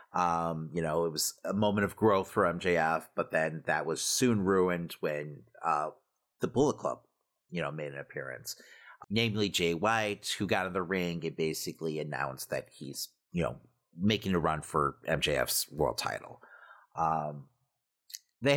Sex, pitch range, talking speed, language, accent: male, 85-130 Hz, 165 wpm, English, American